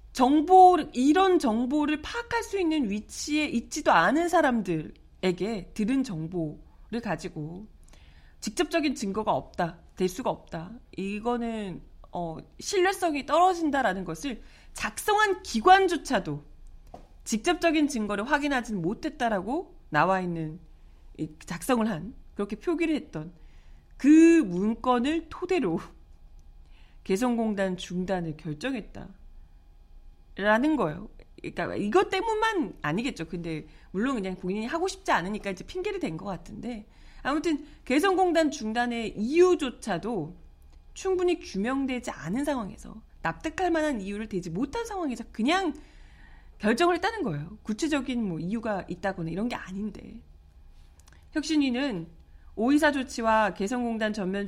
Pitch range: 185-305 Hz